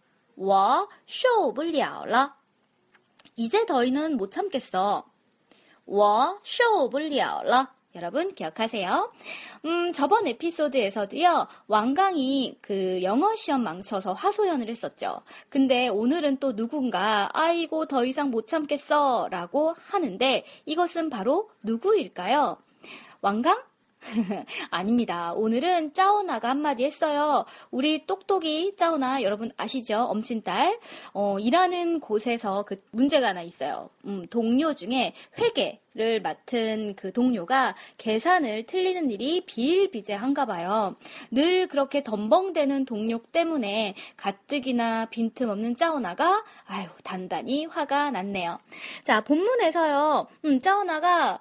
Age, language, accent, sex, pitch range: 20-39, Korean, native, female, 225-335 Hz